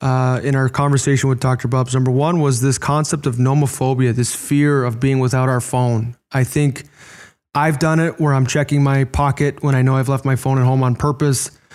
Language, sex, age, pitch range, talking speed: English, male, 20-39, 125-140 Hz, 215 wpm